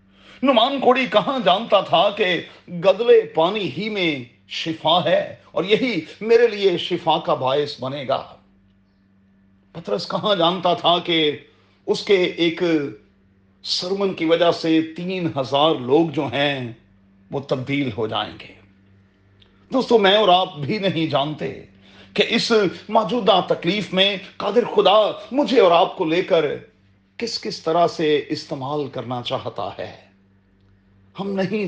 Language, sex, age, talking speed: Urdu, male, 40-59, 140 wpm